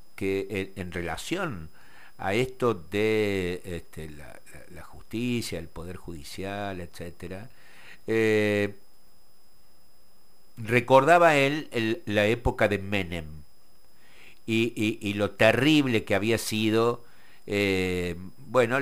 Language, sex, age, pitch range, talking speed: Spanish, male, 60-79, 90-120 Hz, 105 wpm